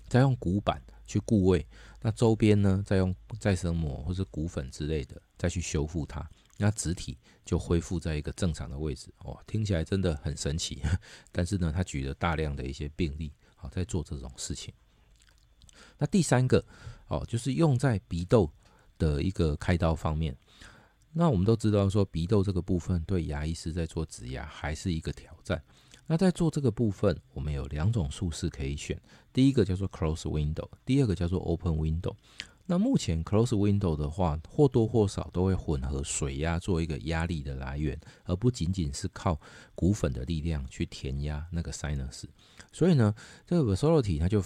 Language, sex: Chinese, male